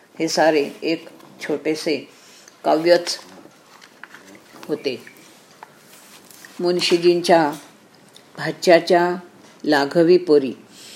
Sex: female